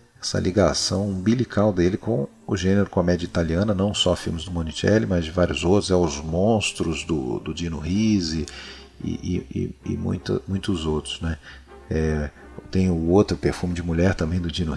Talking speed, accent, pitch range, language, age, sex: 160 wpm, Brazilian, 85-105 Hz, Portuguese, 40-59, male